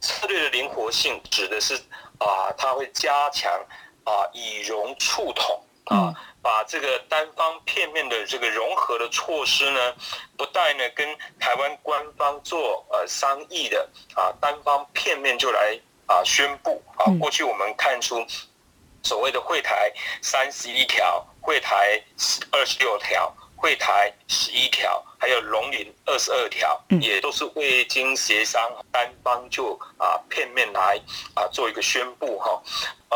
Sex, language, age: male, Chinese, 30-49